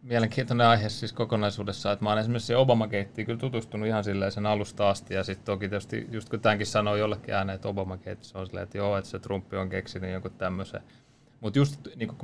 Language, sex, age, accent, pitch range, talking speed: Finnish, male, 30-49, native, 100-120 Hz, 175 wpm